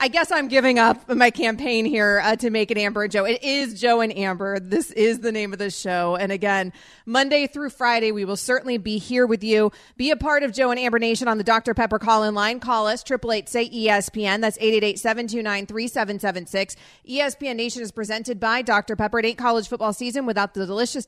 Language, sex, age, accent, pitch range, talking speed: English, female, 30-49, American, 195-230 Hz, 245 wpm